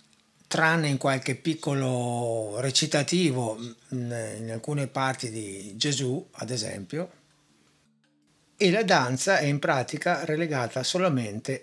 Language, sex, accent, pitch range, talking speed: Italian, male, native, 115-145 Hz, 105 wpm